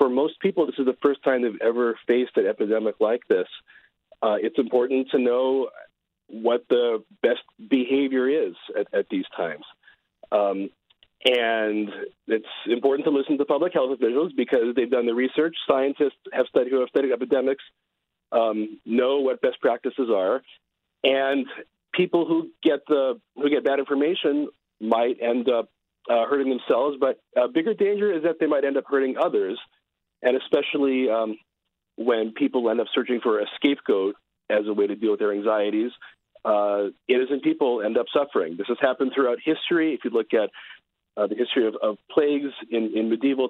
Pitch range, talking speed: 115-150 Hz, 170 wpm